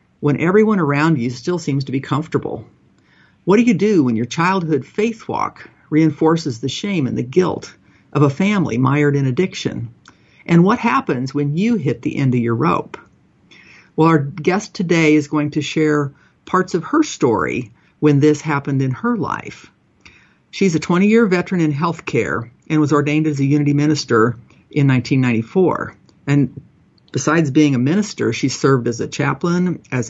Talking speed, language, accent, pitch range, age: 170 wpm, English, American, 140-170 Hz, 50-69